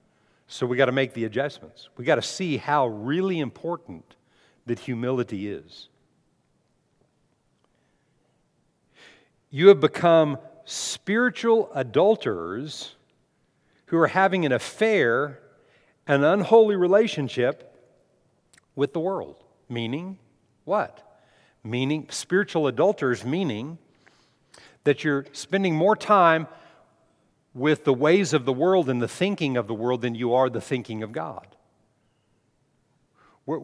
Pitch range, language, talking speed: 125-160 Hz, English, 115 wpm